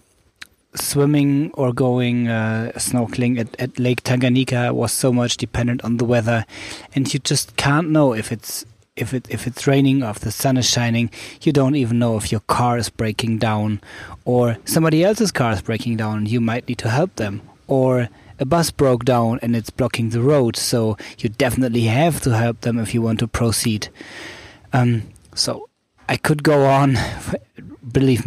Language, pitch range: English, 110-130 Hz